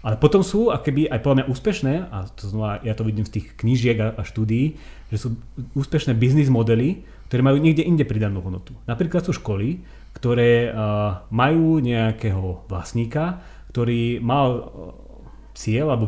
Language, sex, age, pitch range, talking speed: Slovak, male, 30-49, 110-140 Hz, 145 wpm